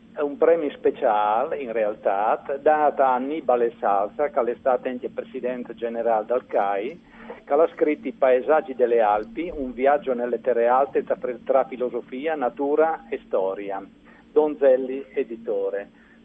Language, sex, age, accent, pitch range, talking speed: Italian, male, 50-69, native, 125-185 Hz, 135 wpm